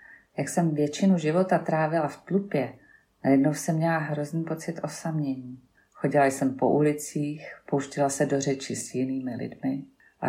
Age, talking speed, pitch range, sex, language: 40-59, 145 wpm, 135-160 Hz, female, Czech